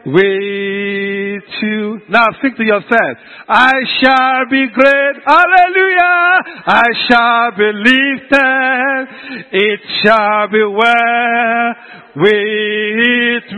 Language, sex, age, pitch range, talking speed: English, male, 50-69, 235-330 Hz, 90 wpm